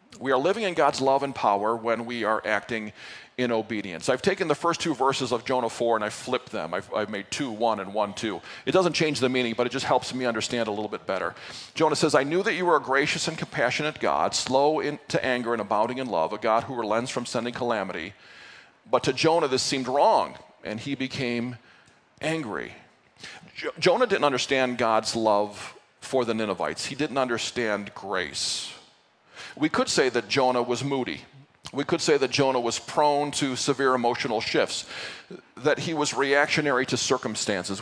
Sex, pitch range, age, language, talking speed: male, 110-140 Hz, 40-59, English, 195 wpm